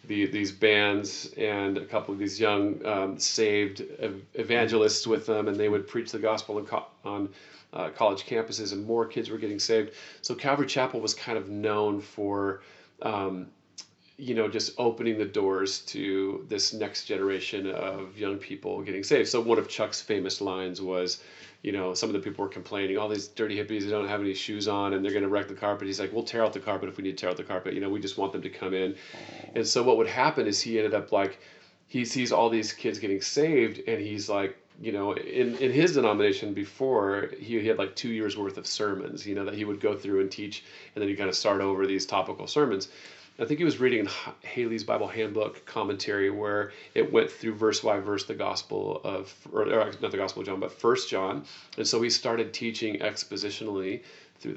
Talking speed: 220 wpm